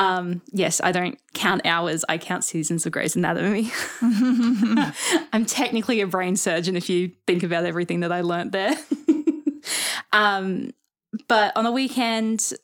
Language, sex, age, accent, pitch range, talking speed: English, female, 10-29, Australian, 175-220 Hz, 145 wpm